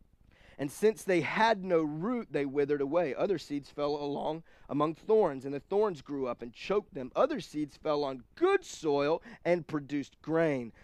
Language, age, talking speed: English, 30-49, 175 wpm